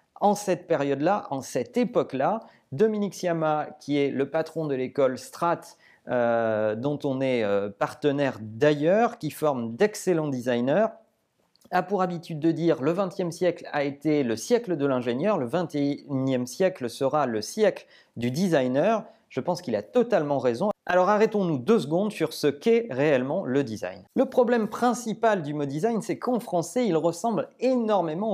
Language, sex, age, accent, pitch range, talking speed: French, male, 40-59, French, 140-210 Hz, 165 wpm